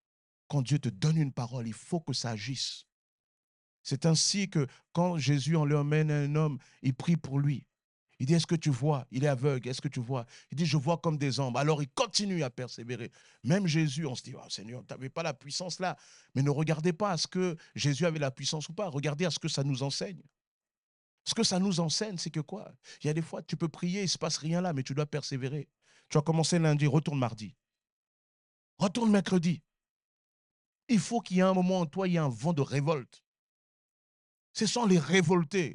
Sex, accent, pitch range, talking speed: male, French, 145-210 Hz, 230 wpm